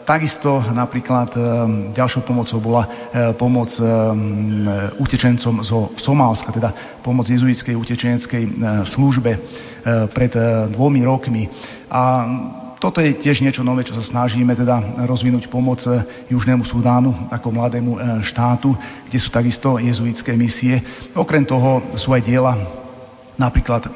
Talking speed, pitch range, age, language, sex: 115 wpm, 120-130 Hz, 40-59, Slovak, male